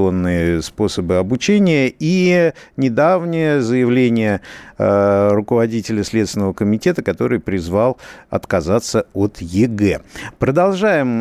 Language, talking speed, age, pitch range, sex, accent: Russian, 75 wpm, 50-69, 110-155 Hz, male, native